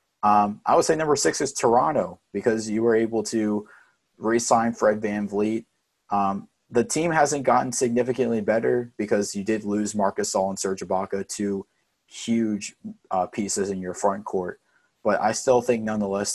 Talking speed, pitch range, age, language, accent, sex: 170 wpm, 95-110 Hz, 20-39, English, American, male